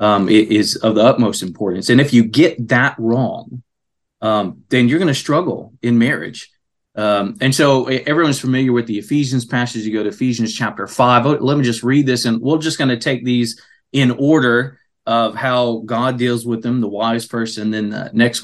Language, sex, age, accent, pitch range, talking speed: English, male, 30-49, American, 110-135 Hz, 205 wpm